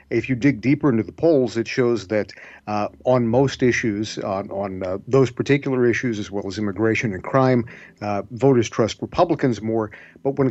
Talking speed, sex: 190 wpm, male